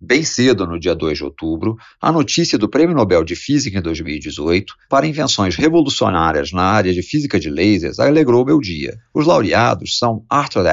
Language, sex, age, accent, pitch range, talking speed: Portuguese, male, 50-69, Brazilian, 100-155 Hz, 180 wpm